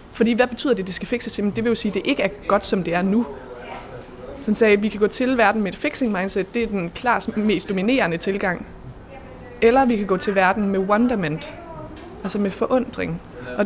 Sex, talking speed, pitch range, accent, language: female, 225 wpm, 195-235 Hz, native, Danish